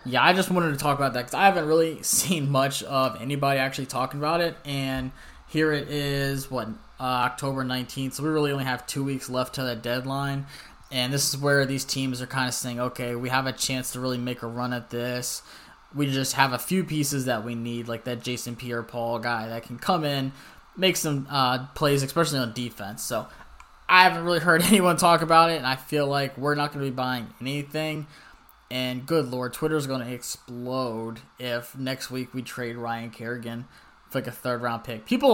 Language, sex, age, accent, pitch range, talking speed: English, male, 10-29, American, 125-150 Hz, 215 wpm